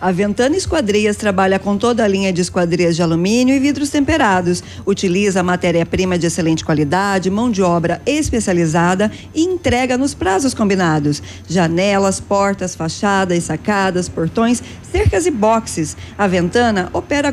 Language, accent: Portuguese, Brazilian